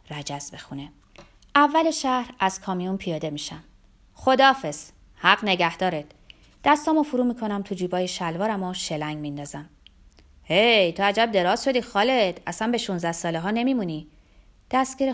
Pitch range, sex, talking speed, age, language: 170-240 Hz, female, 130 wpm, 30-49, Persian